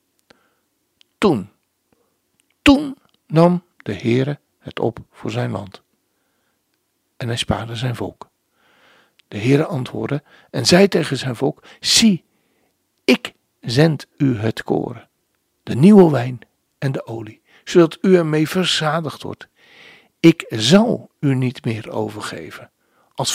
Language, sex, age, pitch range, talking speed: Dutch, male, 60-79, 120-180 Hz, 120 wpm